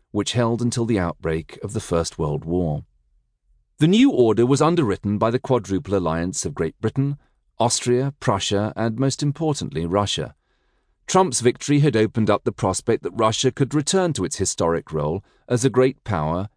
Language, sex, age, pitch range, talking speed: English, male, 40-59, 90-130 Hz, 170 wpm